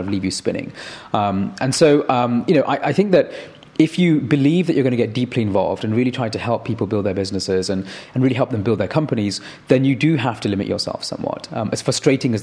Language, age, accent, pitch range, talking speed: English, 30-49, British, 100-130 Hz, 255 wpm